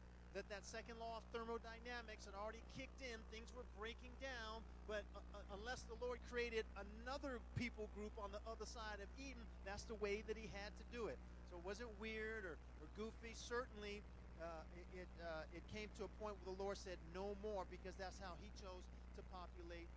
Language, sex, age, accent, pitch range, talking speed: English, male, 40-59, American, 170-230 Hz, 200 wpm